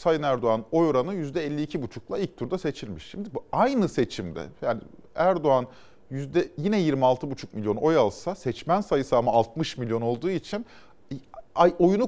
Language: Turkish